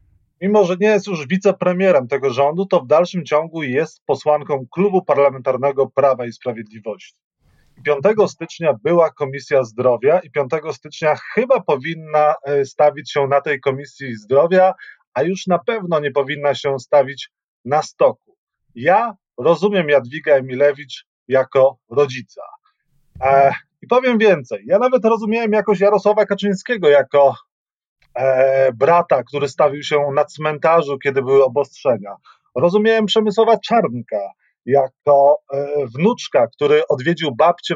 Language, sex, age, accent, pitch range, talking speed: Polish, male, 30-49, native, 140-205 Hz, 125 wpm